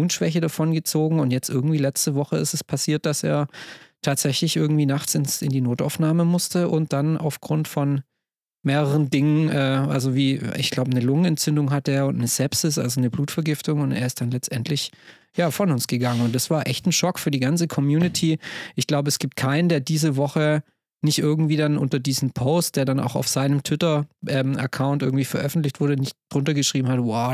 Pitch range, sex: 135-160 Hz, male